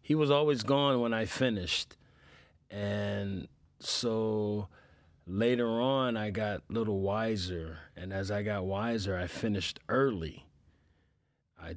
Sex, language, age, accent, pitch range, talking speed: male, English, 30-49, American, 85-110 Hz, 125 wpm